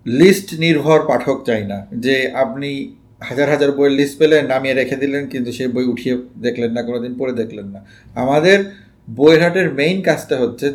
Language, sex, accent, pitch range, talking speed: Bengali, male, native, 130-170 Hz, 180 wpm